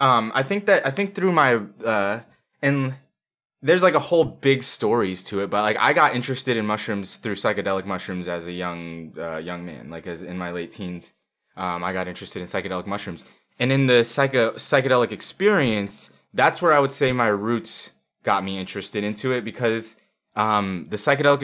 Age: 20-39